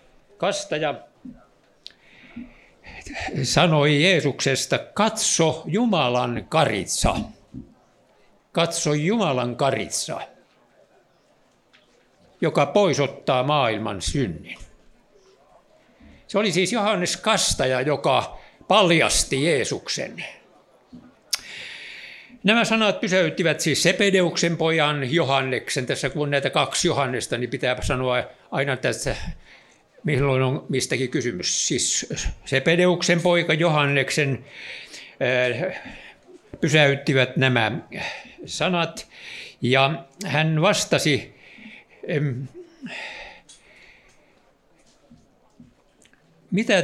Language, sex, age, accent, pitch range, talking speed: Finnish, male, 60-79, native, 135-205 Hz, 70 wpm